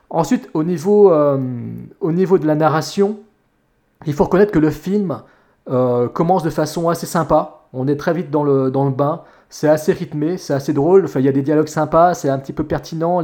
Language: French